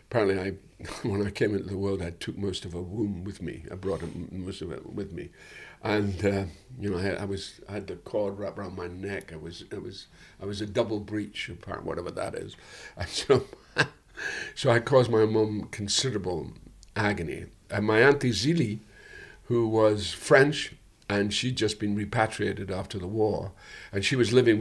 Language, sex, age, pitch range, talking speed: English, male, 60-79, 100-115 Hz, 190 wpm